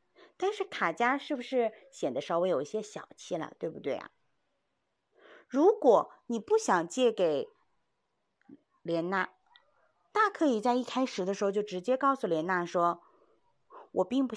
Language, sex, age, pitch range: Chinese, female, 30-49, 195-295 Hz